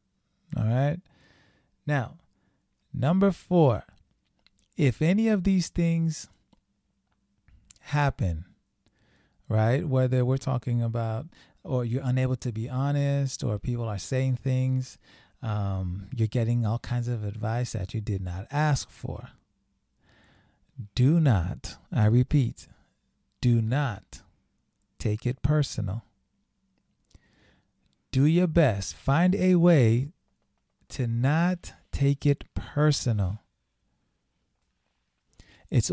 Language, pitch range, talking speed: English, 105-145 Hz, 100 wpm